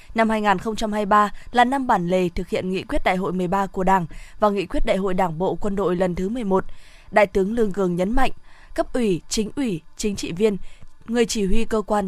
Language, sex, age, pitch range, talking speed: Vietnamese, female, 20-39, 190-230 Hz, 225 wpm